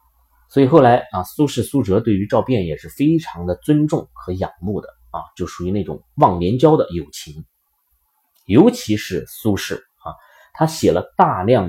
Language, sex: Chinese, male